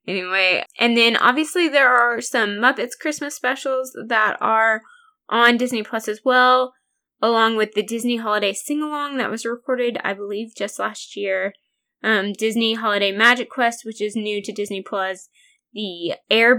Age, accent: 10-29, American